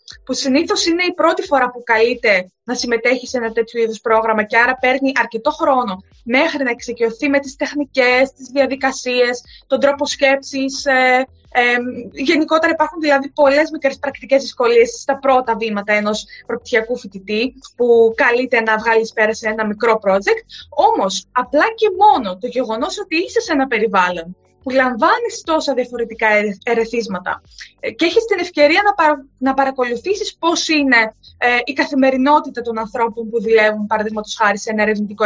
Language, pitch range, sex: Greek, 230-330 Hz, female